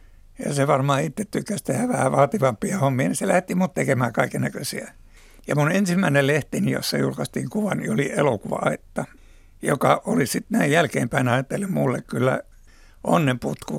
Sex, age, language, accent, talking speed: male, 60-79, Finnish, native, 150 wpm